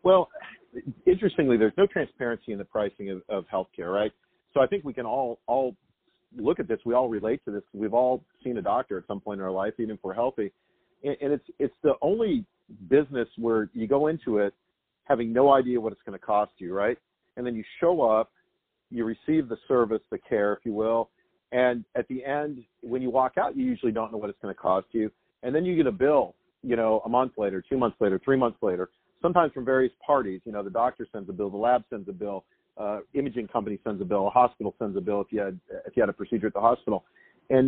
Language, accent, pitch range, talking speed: English, American, 105-130 Hz, 240 wpm